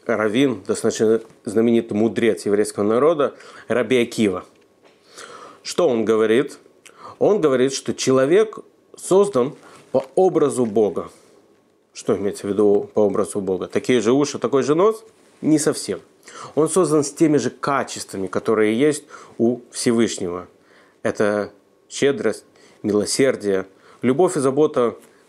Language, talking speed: Russian, 115 wpm